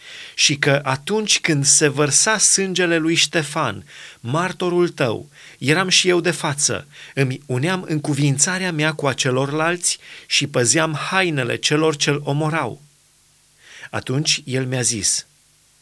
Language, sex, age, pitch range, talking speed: Romanian, male, 30-49, 130-170 Hz, 130 wpm